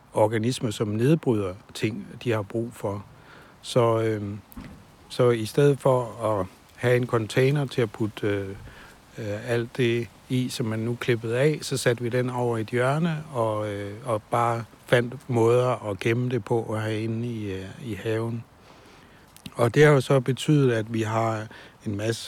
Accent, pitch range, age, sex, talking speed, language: native, 105-125 Hz, 60-79, male, 170 wpm, Danish